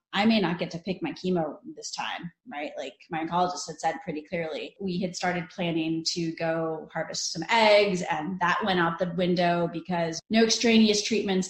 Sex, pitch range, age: female, 180-220 Hz, 30-49